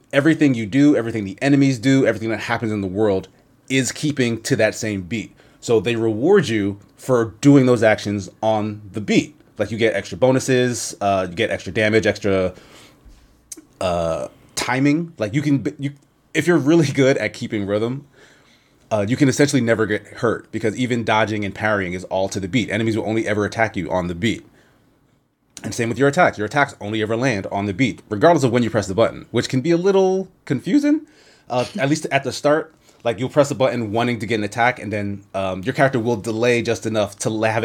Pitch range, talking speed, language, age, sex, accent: 105-135 Hz, 210 wpm, English, 30-49, male, American